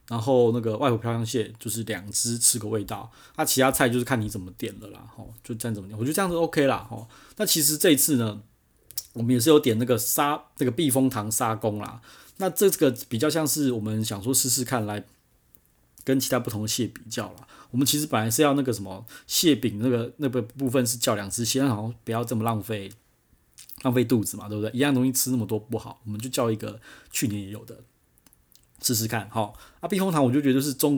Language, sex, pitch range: Chinese, male, 110-135 Hz